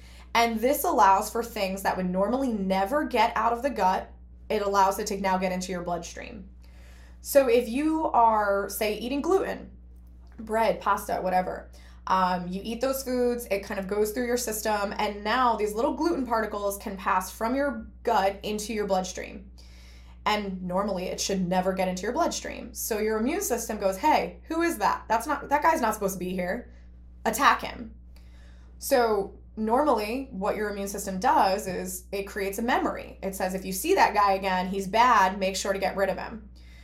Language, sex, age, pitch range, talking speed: English, female, 20-39, 185-230 Hz, 190 wpm